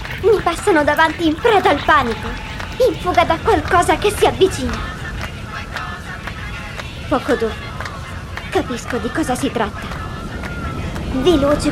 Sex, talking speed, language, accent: male, 115 wpm, Italian, native